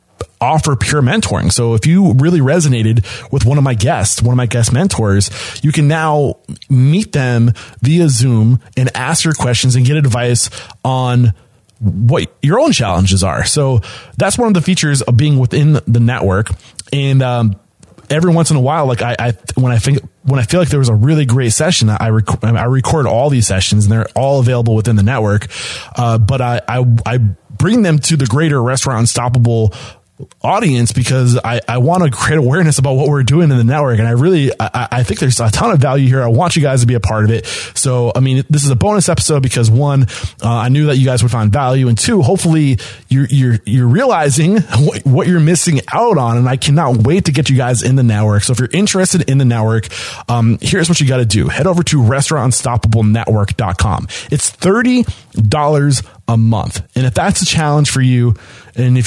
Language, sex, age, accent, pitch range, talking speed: English, male, 20-39, American, 115-145 Hz, 215 wpm